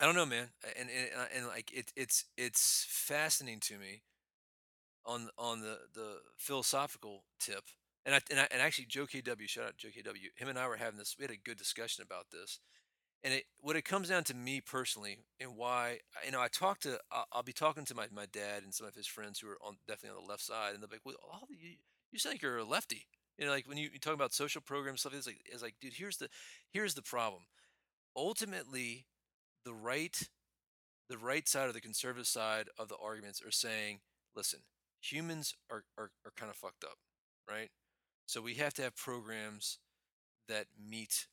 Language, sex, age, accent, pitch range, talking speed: English, male, 40-59, American, 105-135 Hz, 215 wpm